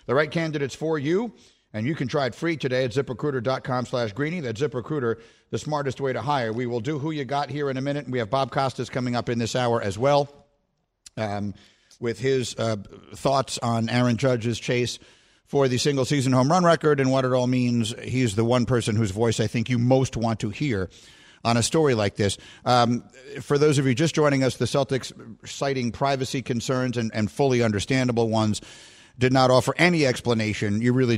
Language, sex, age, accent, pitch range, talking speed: English, male, 50-69, American, 110-135 Hz, 210 wpm